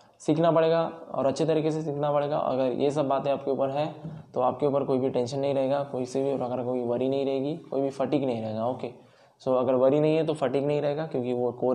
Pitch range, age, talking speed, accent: 125-145 Hz, 10-29, 255 wpm, native